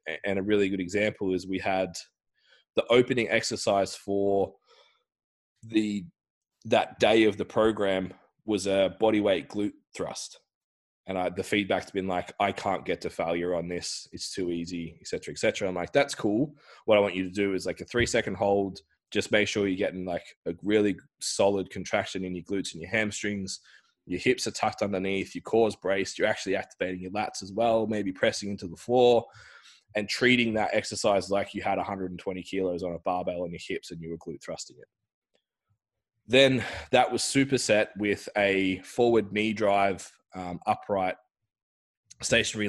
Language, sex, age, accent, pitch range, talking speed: English, male, 20-39, Australian, 95-110 Hz, 180 wpm